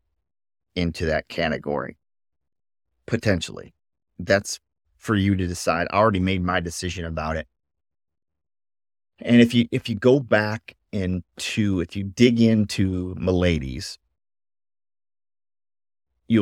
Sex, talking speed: male, 110 wpm